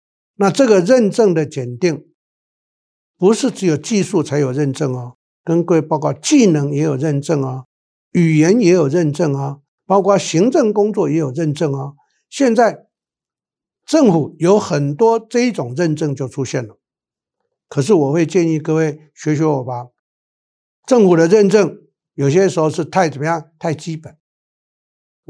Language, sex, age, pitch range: Chinese, male, 60-79, 145-195 Hz